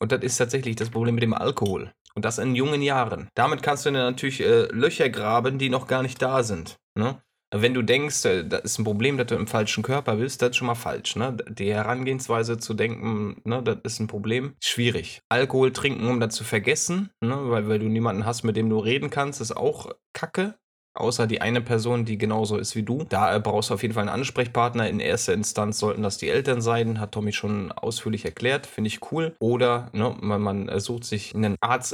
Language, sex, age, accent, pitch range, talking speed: German, male, 20-39, German, 105-125 Hz, 220 wpm